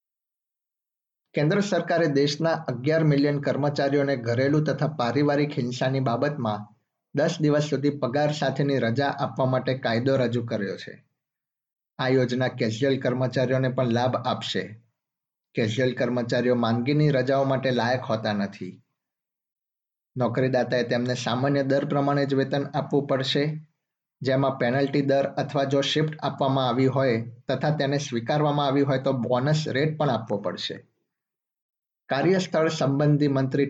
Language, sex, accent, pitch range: Gujarati, male, native, 125-145 Hz